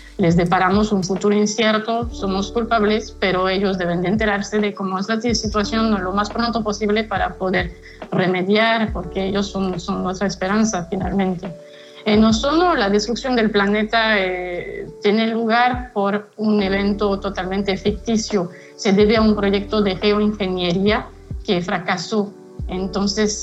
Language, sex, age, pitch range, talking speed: Spanish, female, 20-39, 190-215 Hz, 140 wpm